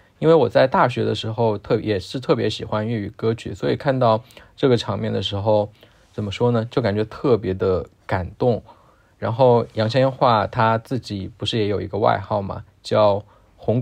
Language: Chinese